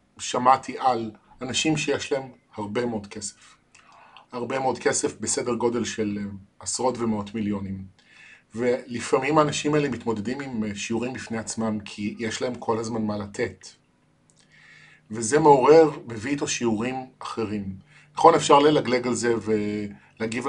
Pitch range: 110-130 Hz